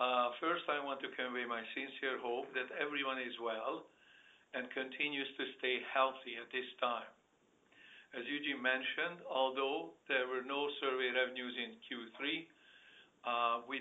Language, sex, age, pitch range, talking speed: English, male, 60-79, 125-140 Hz, 150 wpm